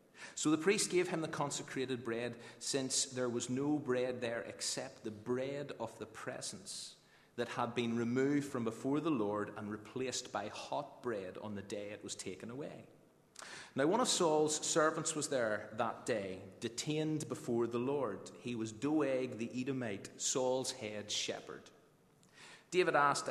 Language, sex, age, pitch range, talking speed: English, male, 30-49, 120-150 Hz, 160 wpm